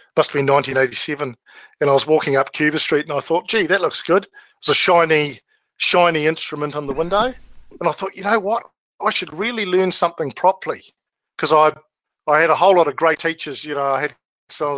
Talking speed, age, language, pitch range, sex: 225 wpm, 50-69, English, 135-165 Hz, male